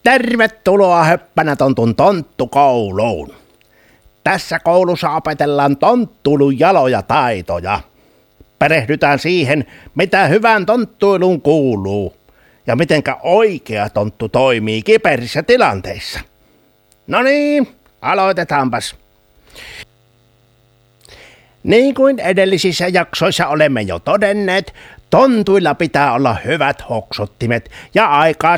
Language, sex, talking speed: Finnish, male, 85 wpm